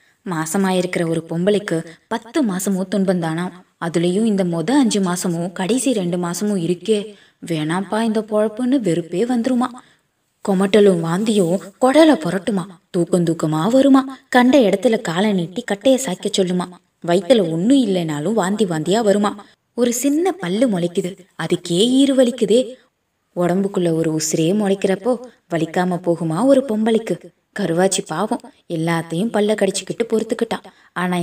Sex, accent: female, native